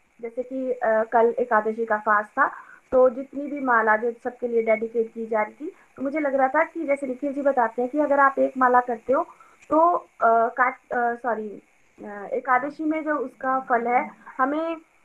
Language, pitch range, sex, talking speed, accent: Hindi, 240-300 Hz, female, 180 wpm, native